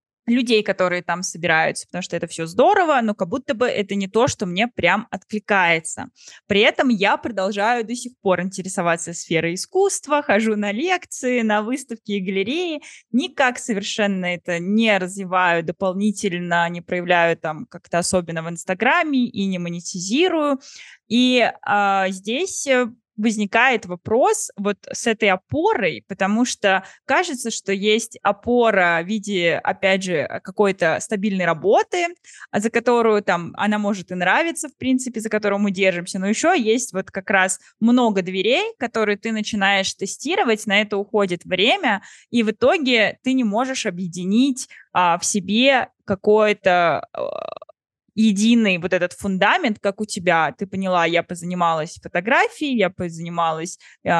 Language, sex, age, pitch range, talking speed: Russian, female, 20-39, 180-240 Hz, 140 wpm